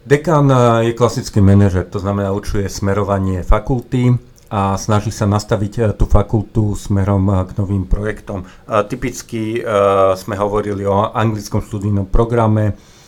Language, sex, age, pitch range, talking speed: Slovak, male, 50-69, 100-115 Hz, 130 wpm